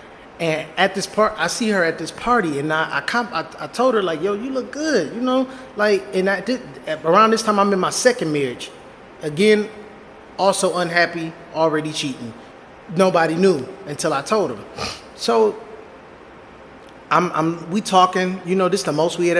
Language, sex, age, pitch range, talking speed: English, male, 20-39, 160-215 Hz, 185 wpm